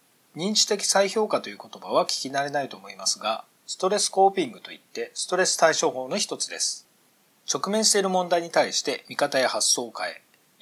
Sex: male